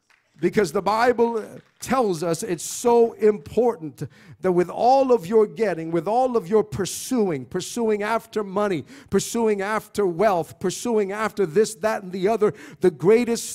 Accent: American